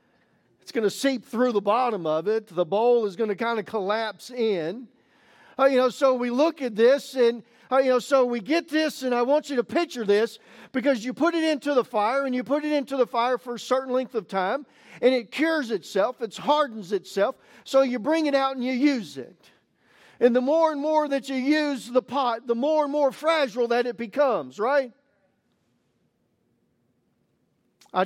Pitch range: 220-275 Hz